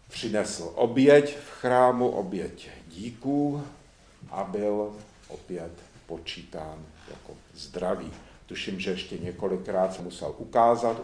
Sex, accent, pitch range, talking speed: male, native, 95-130 Hz, 105 wpm